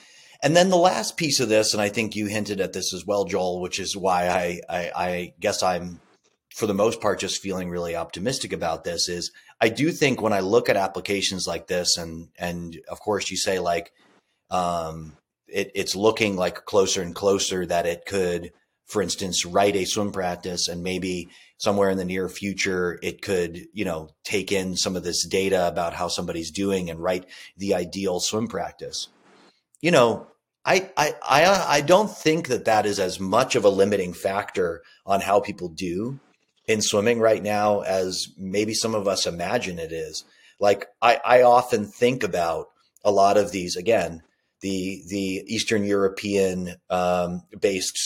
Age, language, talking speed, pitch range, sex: 30-49, English, 180 wpm, 90-115 Hz, male